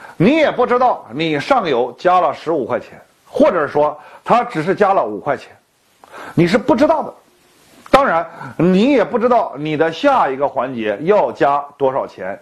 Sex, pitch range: male, 160-245 Hz